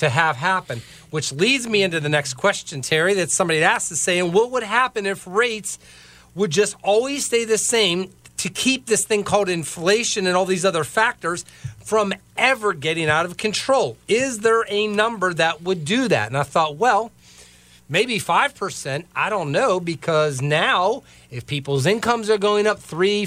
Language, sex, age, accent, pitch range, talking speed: English, male, 40-59, American, 155-210 Hz, 185 wpm